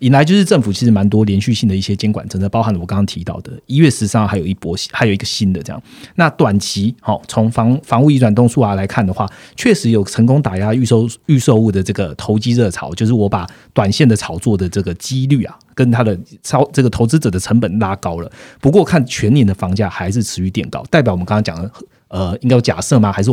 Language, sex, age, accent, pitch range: Chinese, male, 30-49, native, 100-125 Hz